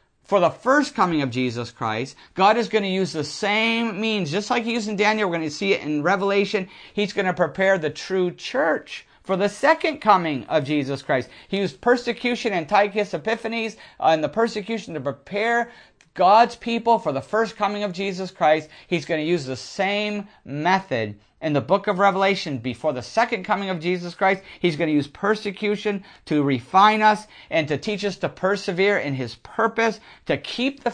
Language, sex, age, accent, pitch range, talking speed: English, male, 50-69, American, 160-215 Hz, 195 wpm